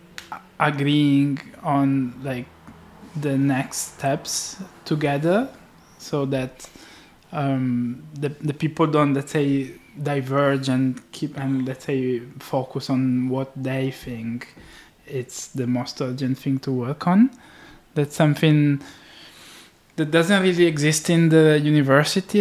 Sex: male